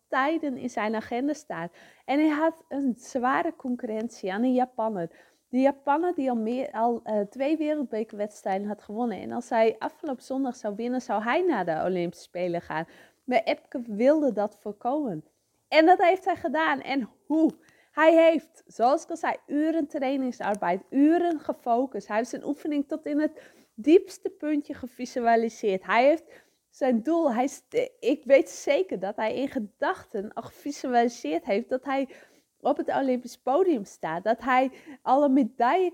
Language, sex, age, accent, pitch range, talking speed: English, female, 20-39, Dutch, 225-300 Hz, 160 wpm